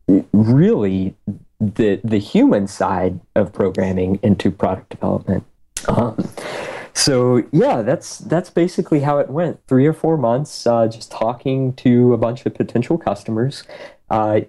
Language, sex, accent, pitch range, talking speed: English, male, American, 100-125 Hz, 135 wpm